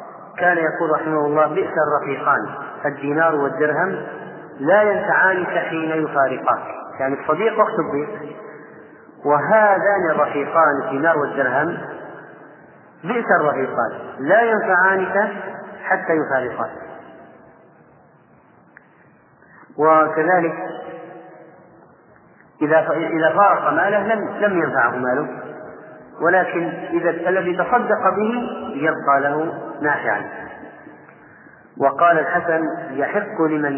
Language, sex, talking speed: Arabic, male, 85 wpm